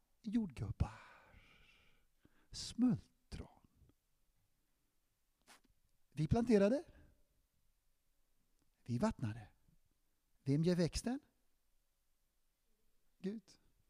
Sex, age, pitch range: male, 60-79, 135-190 Hz